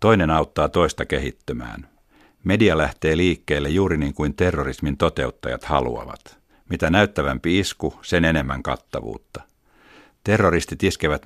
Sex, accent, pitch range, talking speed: male, native, 70-90 Hz, 110 wpm